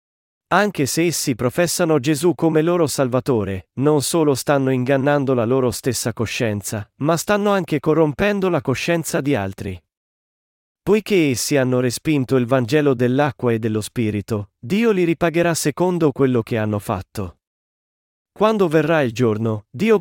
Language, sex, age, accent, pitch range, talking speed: Italian, male, 30-49, native, 115-165 Hz, 140 wpm